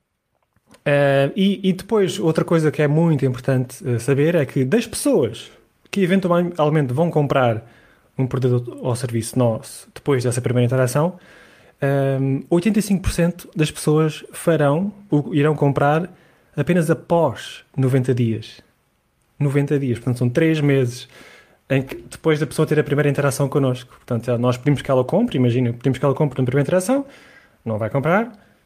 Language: Portuguese